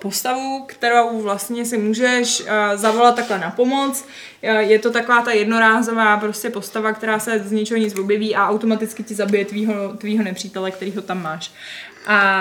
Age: 20-39